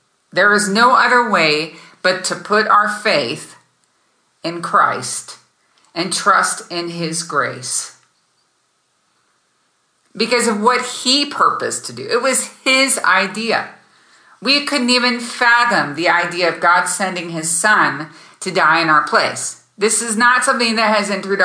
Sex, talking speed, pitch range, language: female, 145 wpm, 170-225 Hz, English